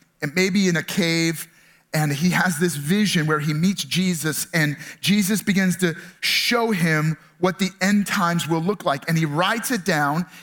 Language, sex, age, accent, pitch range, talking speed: English, male, 30-49, American, 170-220 Hz, 190 wpm